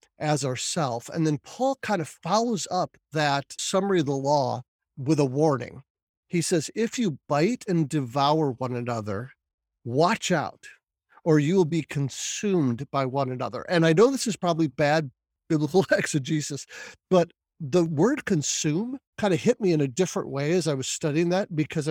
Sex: male